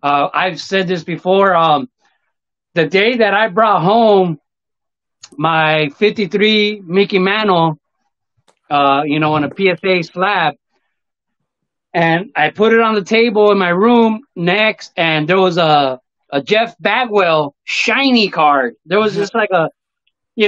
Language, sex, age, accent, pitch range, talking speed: English, male, 30-49, American, 175-240 Hz, 145 wpm